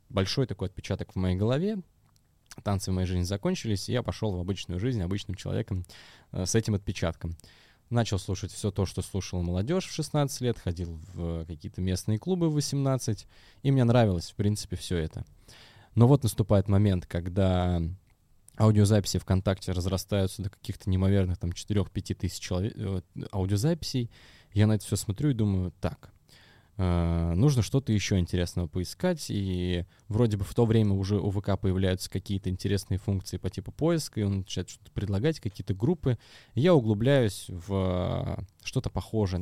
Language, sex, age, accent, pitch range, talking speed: Russian, male, 20-39, native, 95-120 Hz, 155 wpm